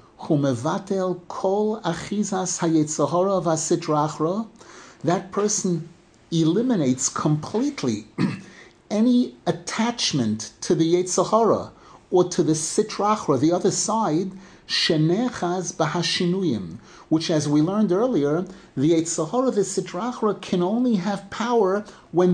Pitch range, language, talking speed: 165-210 Hz, English, 90 wpm